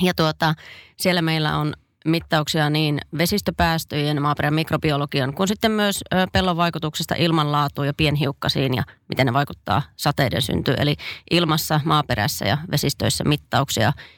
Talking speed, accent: 125 wpm, native